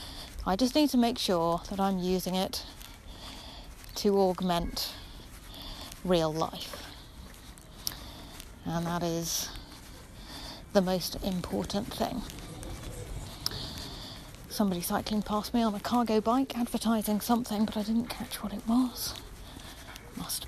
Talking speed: 115 wpm